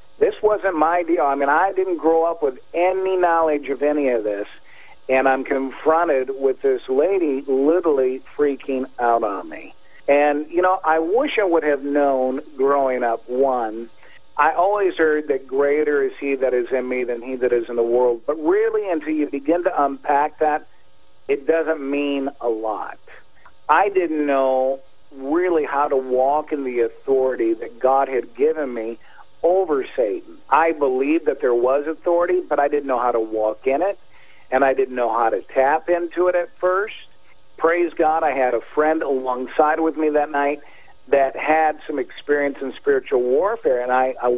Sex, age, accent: male, 50-69, American